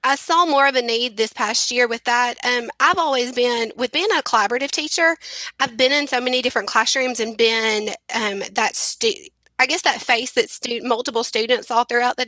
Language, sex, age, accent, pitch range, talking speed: English, female, 20-39, American, 225-260 Hz, 210 wpm